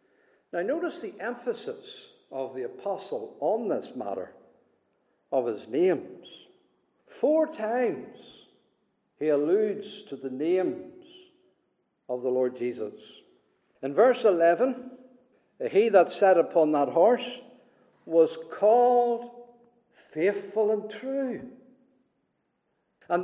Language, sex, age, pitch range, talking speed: English, male, 60-79, 230-295 Hz, 100 wpm